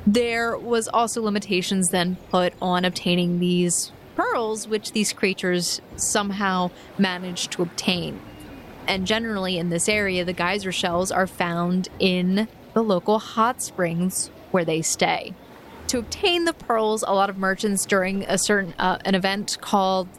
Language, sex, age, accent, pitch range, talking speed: English, female, 20-39, American, 185-225 Hz, 150 wpm